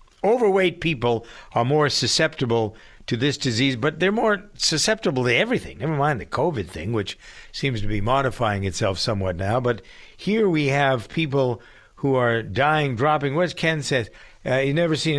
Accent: American